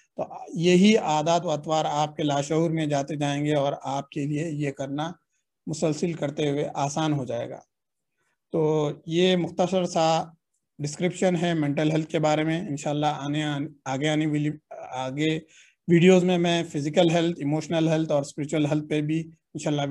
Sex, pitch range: male, 145-170 Hz